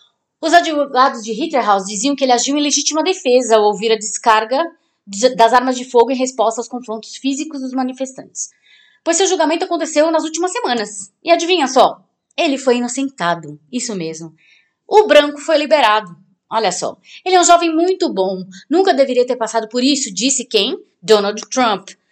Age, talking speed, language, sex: 20-39, 170 wpm, Portuguese, female